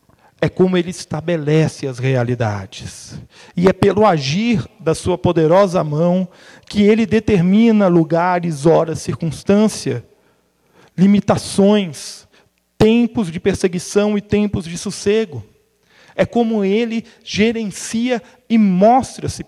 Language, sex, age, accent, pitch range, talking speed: Portuguese, male, 40-59, Brazilian, 155-205 Hz, 105 wpm